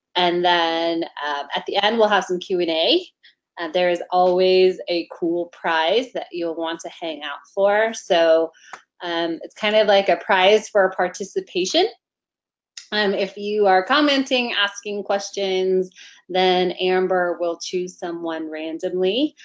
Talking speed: 150 wpm